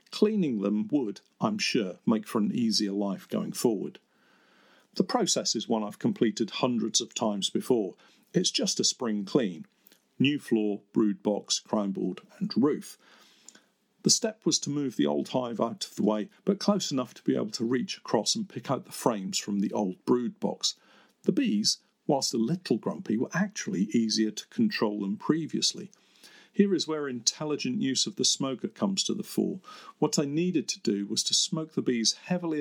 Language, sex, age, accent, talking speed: English, male, 50-69, British, 190 wpm